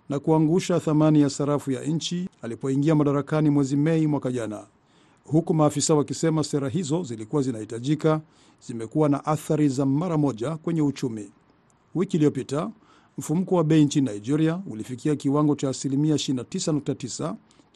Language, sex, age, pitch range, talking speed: Swahili, male, 50-69, 135-160 Hz, 130 wpm